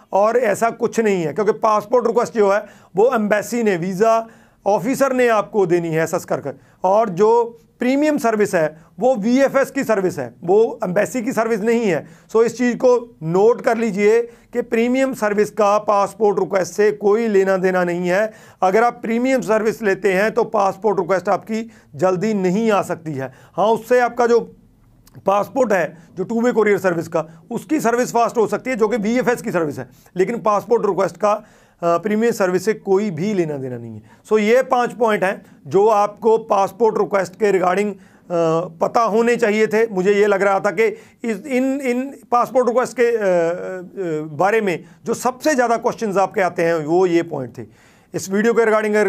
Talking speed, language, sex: 185 wpm, Hindi, male